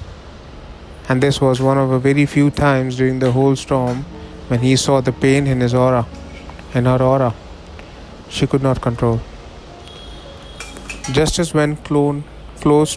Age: 20-39